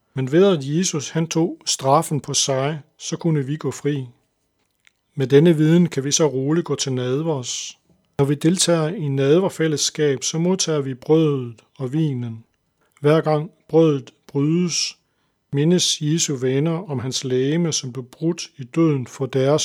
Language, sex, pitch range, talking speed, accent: Danish, male, 135-160 Hz, 160 wpm, native